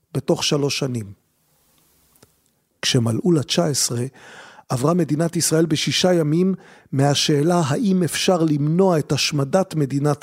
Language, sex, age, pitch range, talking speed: Hebrew, male, 50-69, 135-170 Hz, 105 wpm